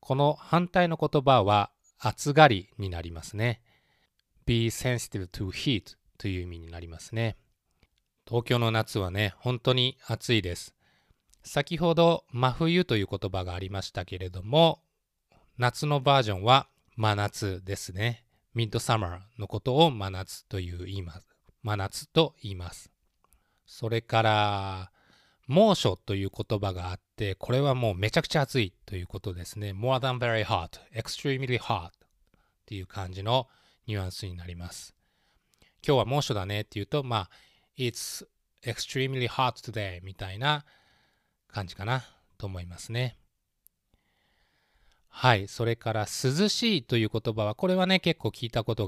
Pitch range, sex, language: 100-130 Hz, male, Japanese